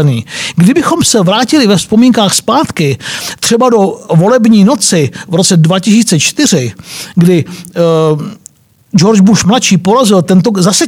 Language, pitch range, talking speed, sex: Czech, 175-230 Hz, 105 wpm, male